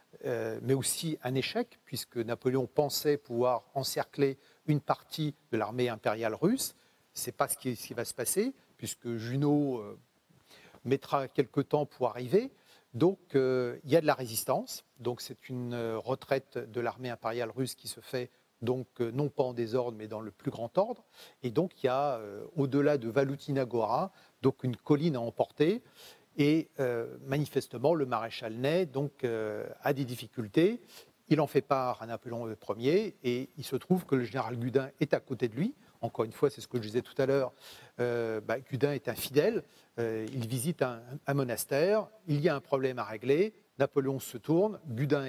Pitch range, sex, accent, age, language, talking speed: 120-145 Hz, male, French, 40-59, French, 190 wpm